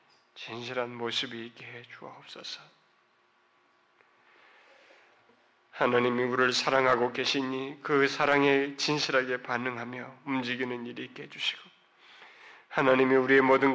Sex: male